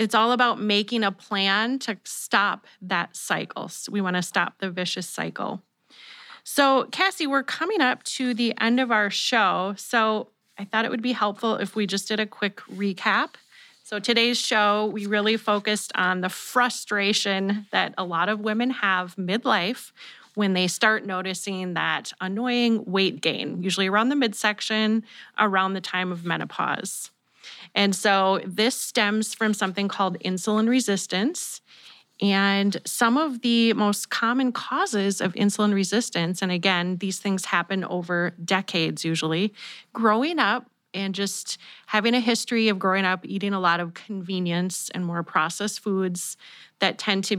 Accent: American